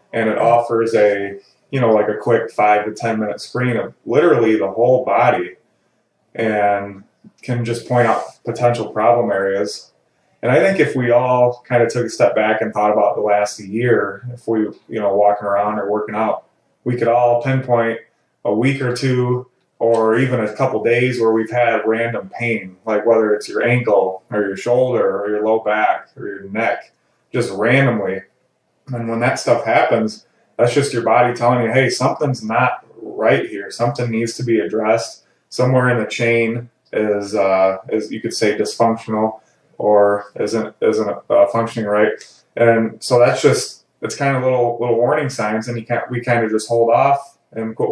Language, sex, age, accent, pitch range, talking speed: English, male, 20-39, American, 110-120 Hz, 185 wpm